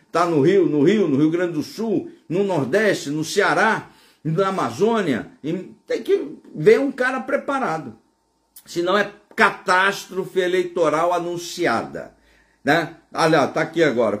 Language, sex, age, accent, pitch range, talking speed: Portuguese, male, 60-79, Brazilian, 160-210 Hz, 135 wpm